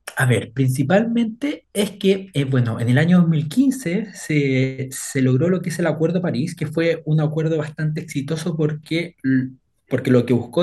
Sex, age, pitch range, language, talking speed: male, 20-39, 130-170 Hz, Spanish, 180 wpm